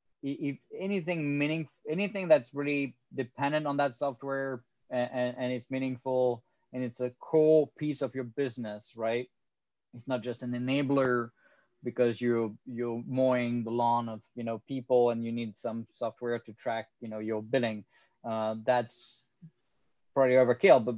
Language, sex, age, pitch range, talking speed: English, male, 20-39, 120-140 Hz, 160 wpm